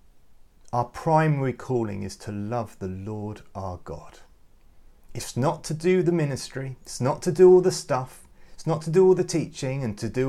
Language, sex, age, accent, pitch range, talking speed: English, male, 30-49, British, 105-145 Hz, 190 wpm